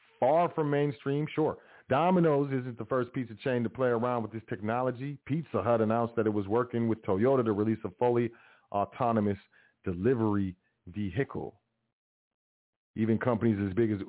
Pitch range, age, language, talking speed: 105-130 Hz, 40-59, English, 160 wpm